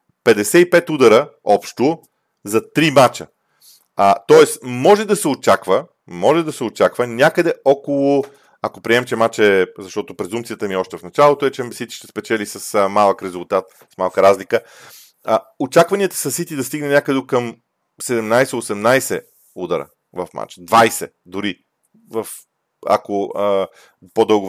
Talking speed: 145 wpm